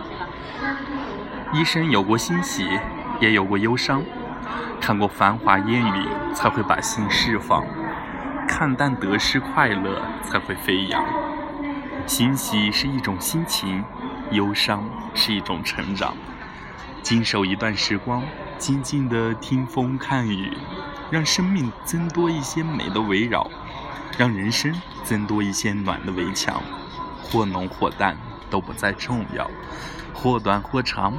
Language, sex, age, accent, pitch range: Chinese, male, 20-39, native, 100-135 Hz